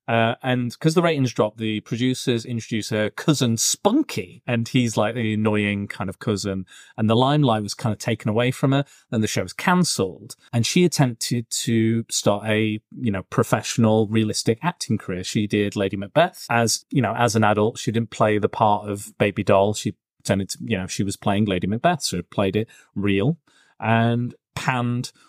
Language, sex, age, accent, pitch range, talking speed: English, male, 30-49, British, 105-135 Hz, 190 wpm